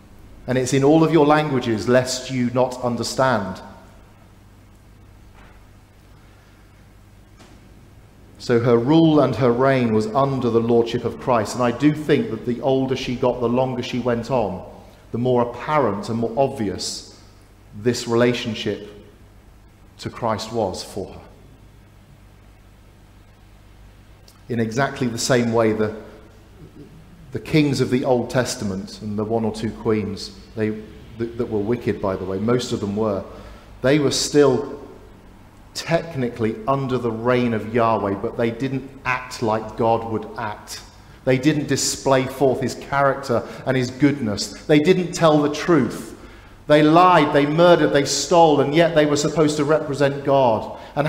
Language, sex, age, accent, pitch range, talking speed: English, male, 40-59, British, 105-135 Hz, 145 wpm